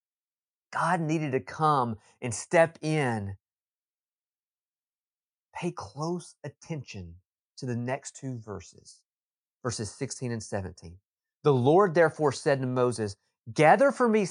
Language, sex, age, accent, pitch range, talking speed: English, male, 30-49, American, 120-170 Hz, 115 wpm